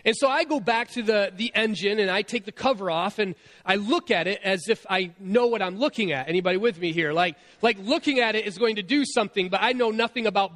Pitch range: 180-230 Hz